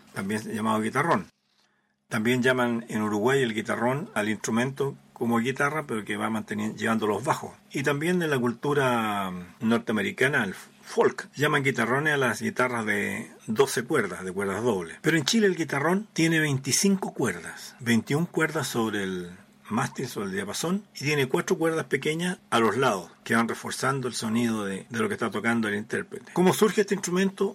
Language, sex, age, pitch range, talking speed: Spanish, male, 40-59, 115-160 Hz, 170 wpm